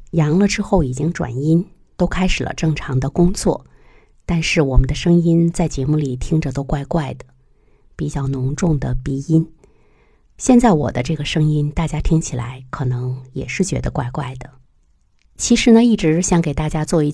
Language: Chinese